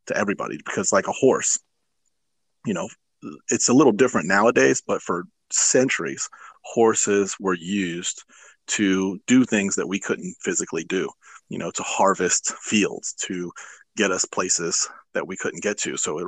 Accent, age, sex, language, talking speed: American, 30-49, male, English, 160 wpm